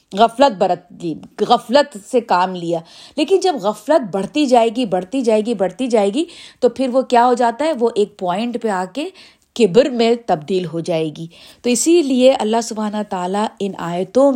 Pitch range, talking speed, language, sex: 205-280 Hz, 190 wpm, Urdu, female